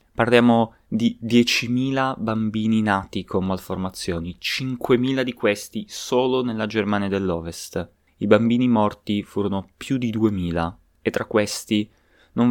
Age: 20-39